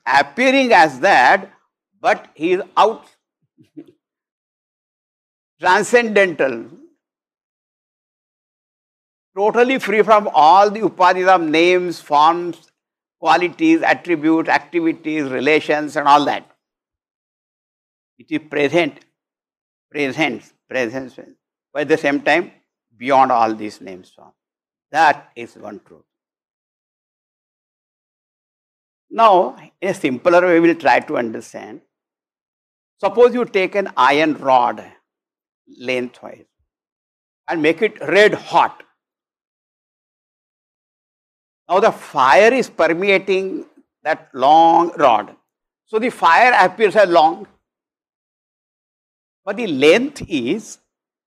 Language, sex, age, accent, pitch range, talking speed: English, male, 60-79, Indian, 150-240 Hz, 95 wpm